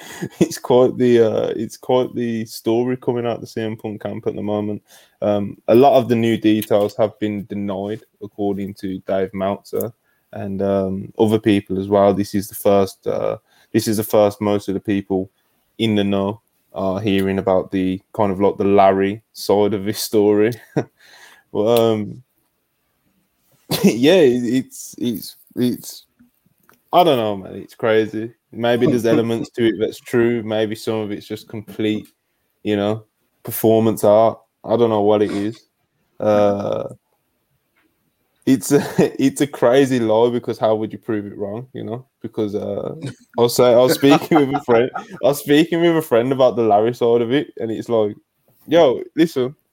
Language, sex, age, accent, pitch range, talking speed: English, male, 20-39, British, 105-120 Hz, 175 wpm